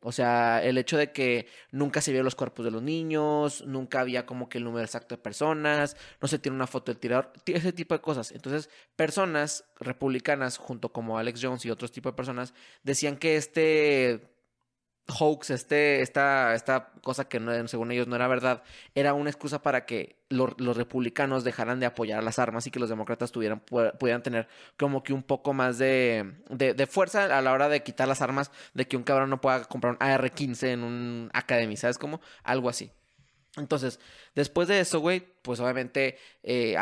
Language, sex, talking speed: Spanish, male, 200 wpm